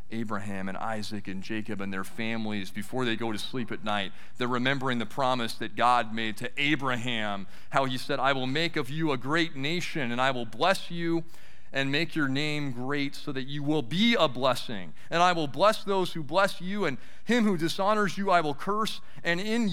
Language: English